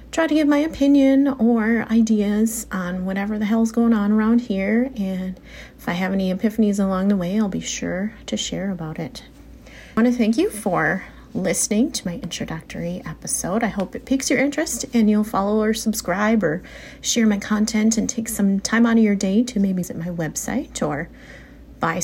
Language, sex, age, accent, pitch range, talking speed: English, female, 30-49, American, 185-240 Hz, 195 wpm